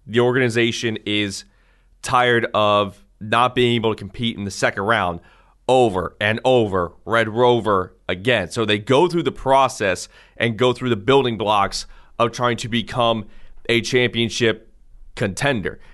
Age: 30-49